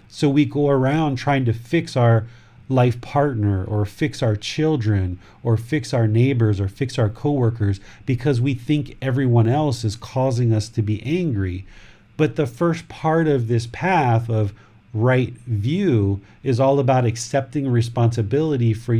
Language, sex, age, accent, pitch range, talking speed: English, male, 40-59, American, 110-135 Hz, 155 wpm